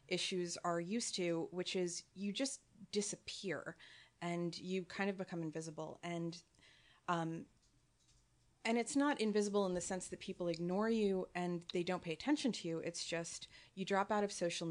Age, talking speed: 30-49, 170 wpm